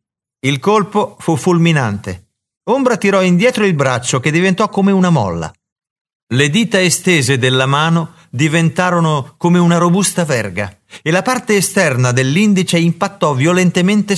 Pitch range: 125-175 Hz